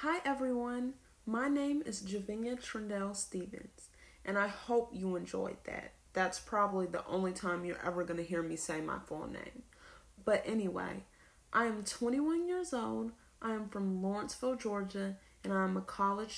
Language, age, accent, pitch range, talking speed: English, 30-49, American, 185-235 Hz, 160 wpm